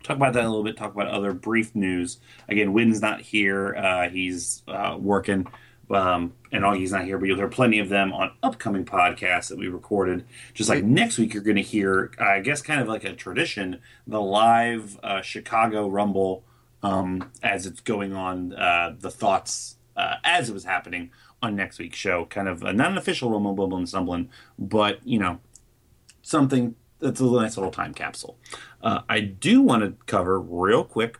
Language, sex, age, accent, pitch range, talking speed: English, male, 30-49, American, 95-120 Hz, 200 wpm